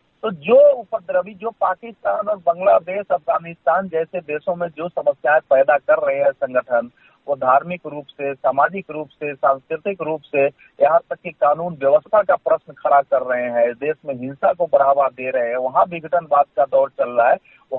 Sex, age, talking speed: male, 40-59, 185 wpm